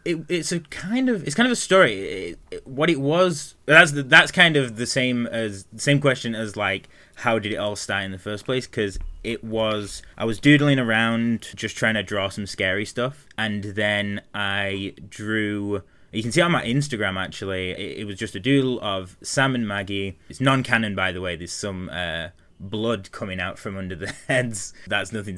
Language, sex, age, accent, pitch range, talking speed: English, male, 20-39, British, 95-120 Hz, 200 wpm